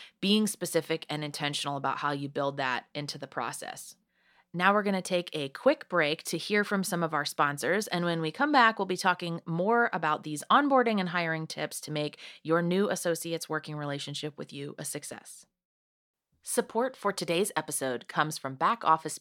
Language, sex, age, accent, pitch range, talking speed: English, female, 30-49, American, 145-190 Hz, 190 wpm